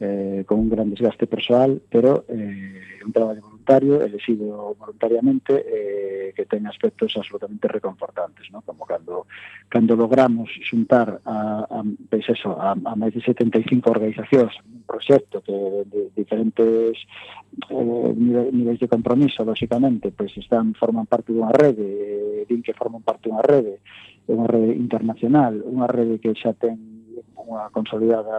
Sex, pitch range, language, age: male, 105-120 Hz, Spanish, 40-59